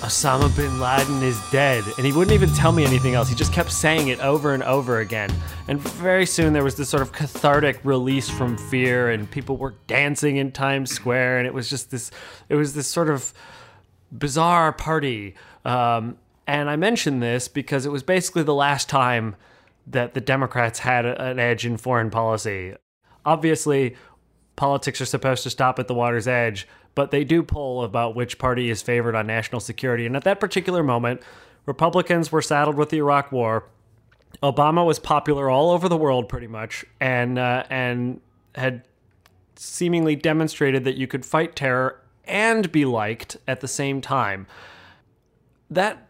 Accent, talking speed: American, 175 wpm